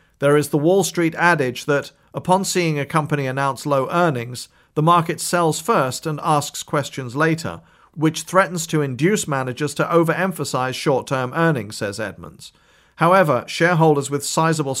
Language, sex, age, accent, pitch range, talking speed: English, male, 40-59, British, 140-170 Hz, 150 wpm